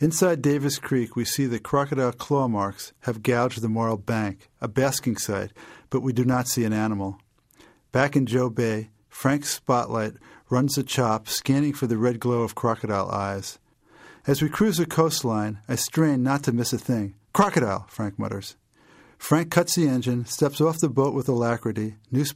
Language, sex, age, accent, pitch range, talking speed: English, male, 50-69, American, 115-145 Hz, 180 wpm